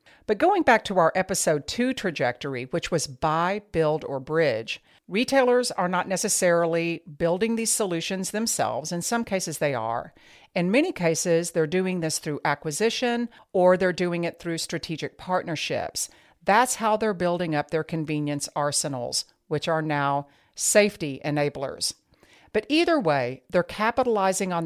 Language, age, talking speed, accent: English, 50-69, 150 wpm, American